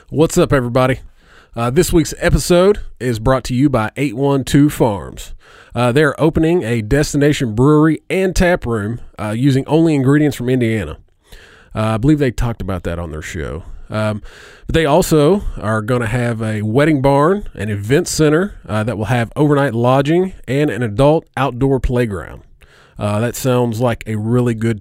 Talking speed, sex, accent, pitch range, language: 170 wpm, male, American, 115-150 Hz, English